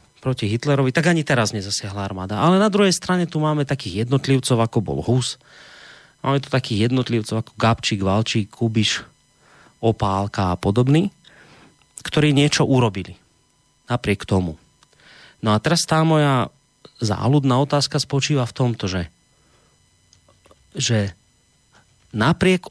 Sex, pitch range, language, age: male, 105-140 Hz, Slovak, 30-49